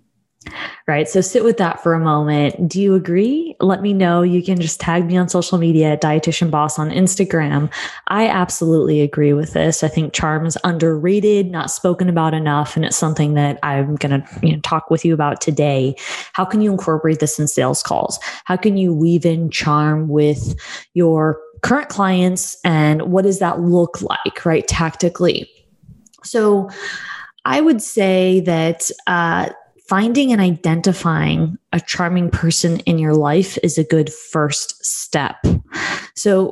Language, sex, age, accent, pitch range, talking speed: English, female, 20-39, American, 155-195 Hz, 165 wpm